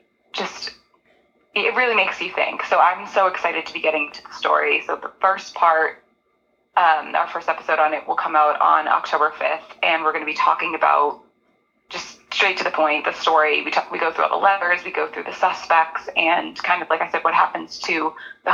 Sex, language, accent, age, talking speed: female, English, American, 20-39, 220 wpm